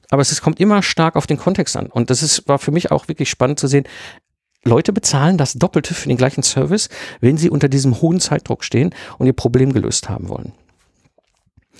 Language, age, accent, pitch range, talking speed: German, 50-69, German, 120-155 Hz, 205 wpm